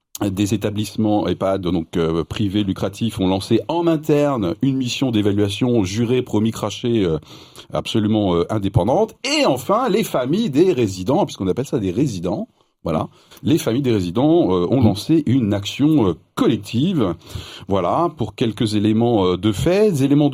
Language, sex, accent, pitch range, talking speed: French, male, French, 95-120 Hz, 155 wpm